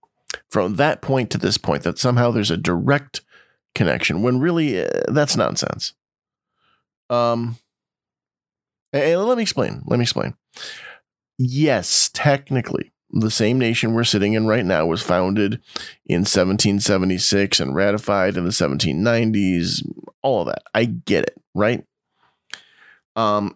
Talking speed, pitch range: 130 wpm, 105-135 Hz